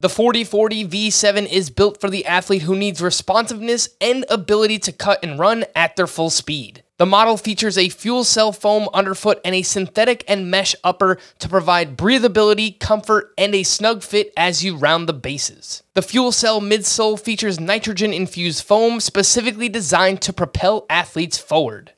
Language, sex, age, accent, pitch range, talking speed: English, male, 20-39, American, 160-210 Hz, 165 wpm